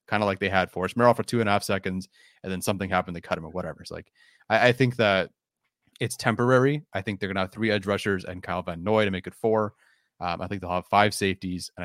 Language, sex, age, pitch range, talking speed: English, male, 30-49, 95-125 Hz, 280 wpm